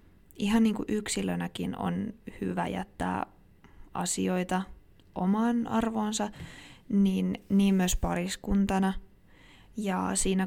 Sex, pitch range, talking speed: female, 140-210 Hz, 90 wpm